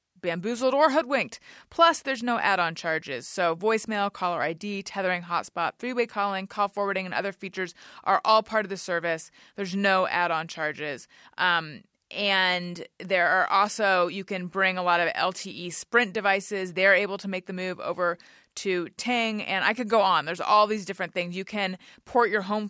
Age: 30-49